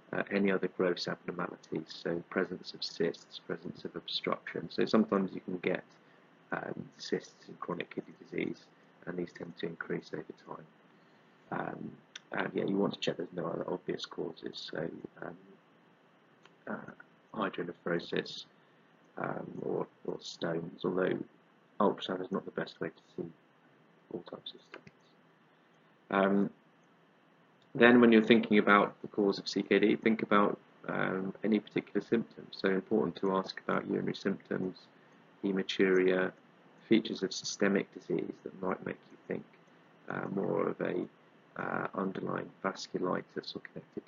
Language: English